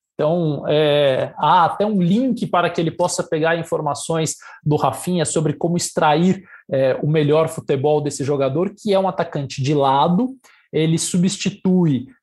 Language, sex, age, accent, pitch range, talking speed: Portuguese, male, 20-39, Brazilian, 150-190 Hz, 140 wpm